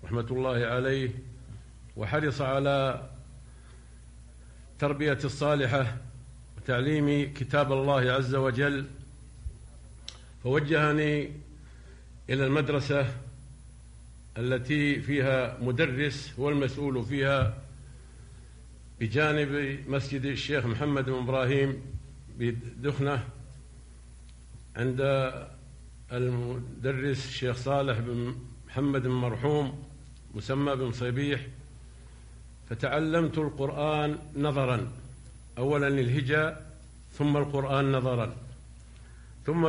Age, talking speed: 50-69, 70 wpm